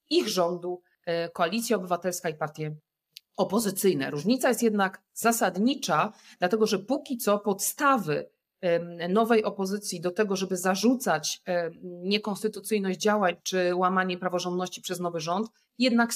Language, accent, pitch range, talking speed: Polish, native, 185-240 Hz, 115 wpm